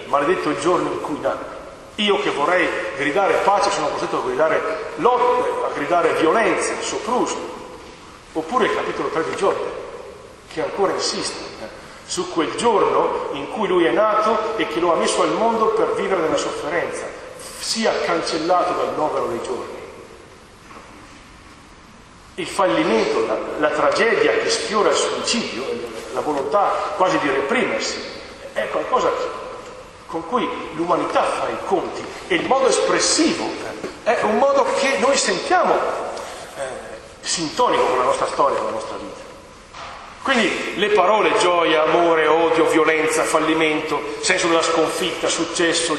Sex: male